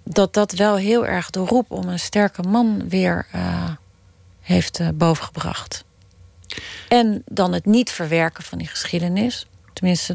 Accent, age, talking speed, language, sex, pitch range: Dutch, 30-49, 150 wpm, Dutch, female, 165-205 Hz